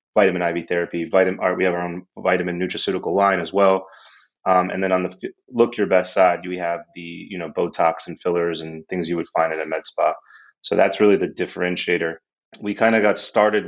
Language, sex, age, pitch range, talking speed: English, male, 30-49, 90-100 Hz, 220 wpm